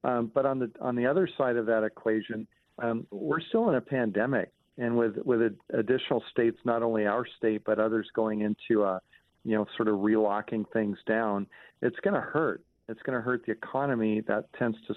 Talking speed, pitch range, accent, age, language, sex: 200 wpm, 105-120 Hz, American, 50-69, English, male